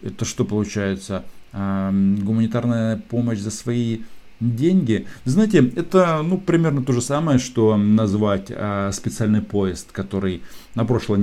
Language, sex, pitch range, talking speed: Russian, male, 100-125 Hz, 120 wpm